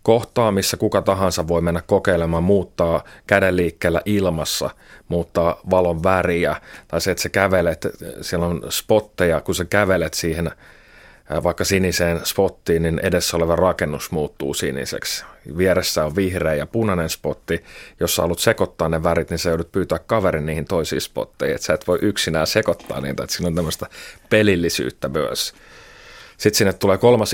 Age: 30-49